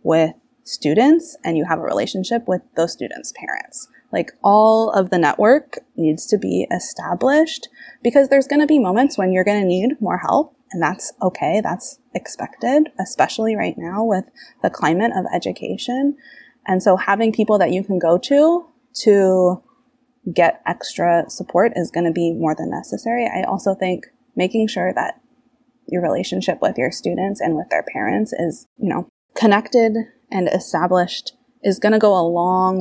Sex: female